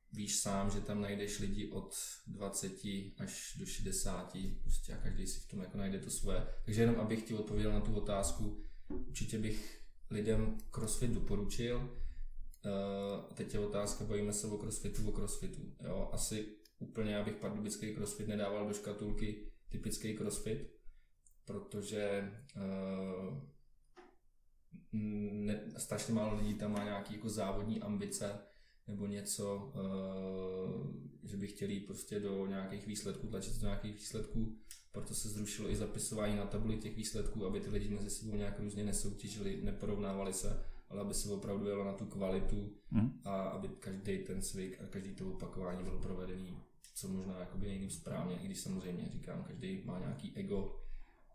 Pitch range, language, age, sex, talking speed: 95-105 Hz, Czech, 20-39, male, 145 wpm